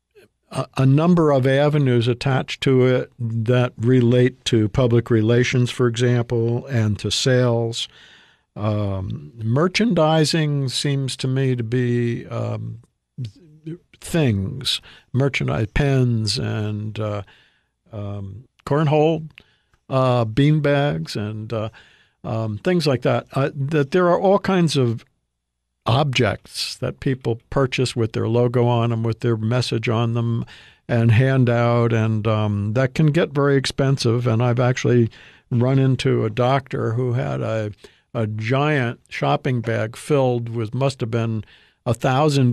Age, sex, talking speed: 50-69, male, 135 wpm